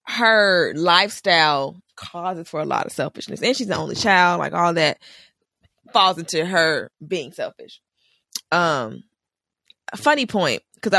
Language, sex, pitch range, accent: English, female, 165-210 Hz, American